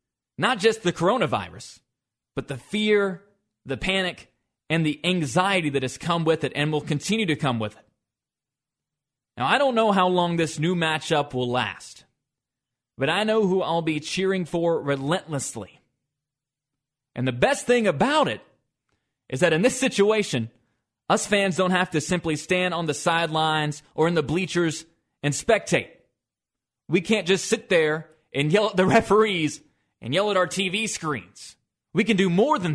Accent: American